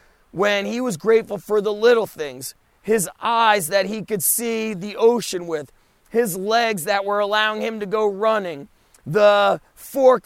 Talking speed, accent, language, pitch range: 165 wpm, American, English, 195-225 Hz